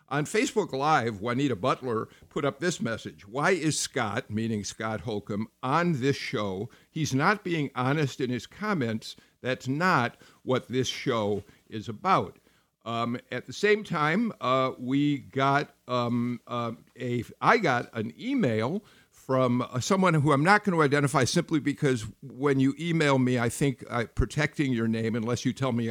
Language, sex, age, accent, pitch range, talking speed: English, male, 50-69, American, 120-150 Hz, 160 wpm